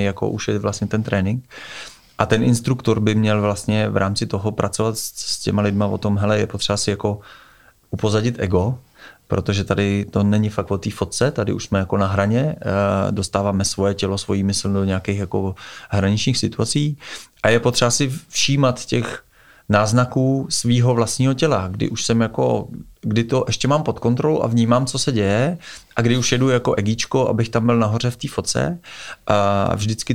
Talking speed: 185 wpm